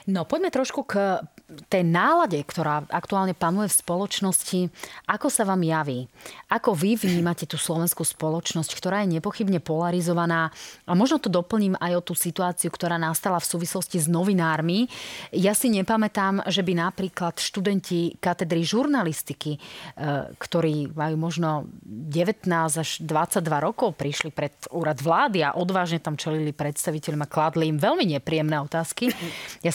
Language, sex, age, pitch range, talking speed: Slovak, female, 30-49, 160-190 Hz, 145 wpm